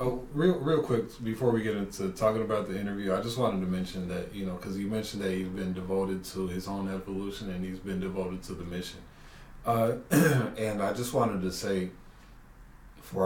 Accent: American